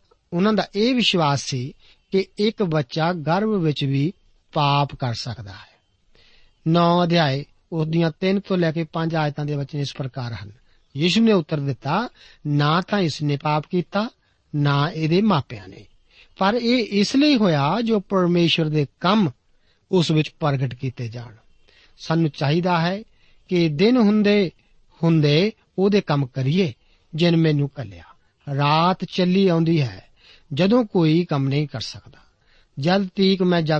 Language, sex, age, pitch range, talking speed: Punjabi, male, 50-69, 140-190 Hz, 120 wpm